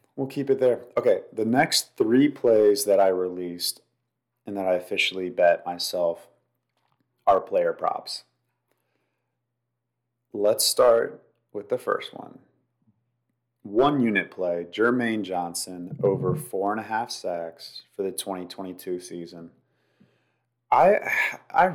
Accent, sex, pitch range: American, male, 90-125 Hz